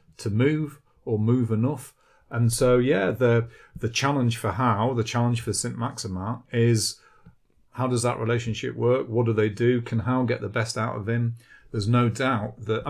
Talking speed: 185 wpm